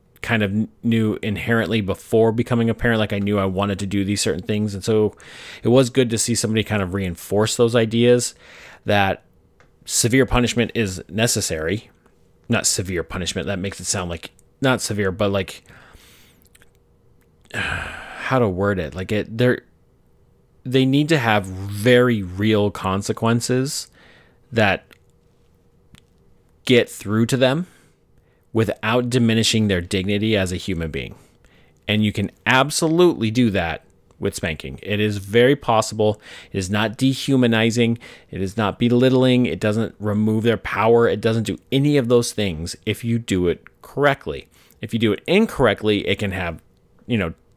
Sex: male